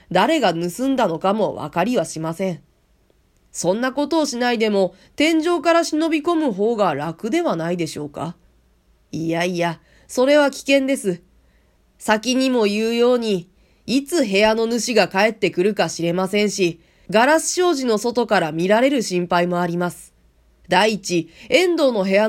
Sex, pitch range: female, 180-250 Hz